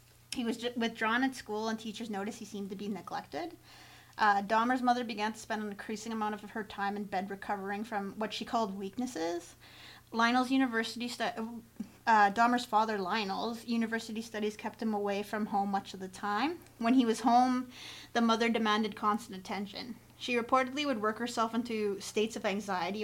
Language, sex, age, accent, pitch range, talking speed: English, female, 30-49, American, 205-250 Hz, 180 wpm